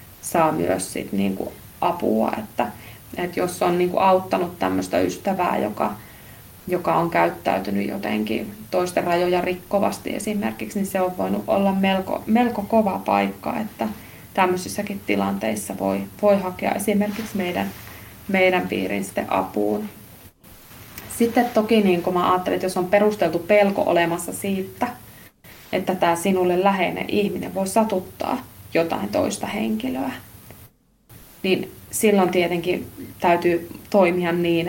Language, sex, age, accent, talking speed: Finnish, female, 20-39, native, 125 wpm